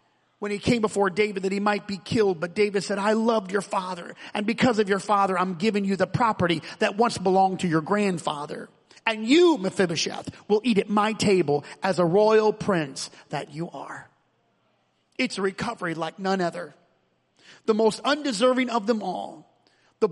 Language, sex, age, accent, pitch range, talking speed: English, male, 40-59, American, 185-240 Hz, 180 wpm